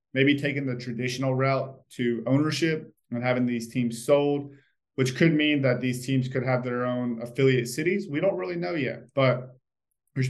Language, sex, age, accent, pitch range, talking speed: English, male, 20-39, American, 115-135 Hz, 180 wpm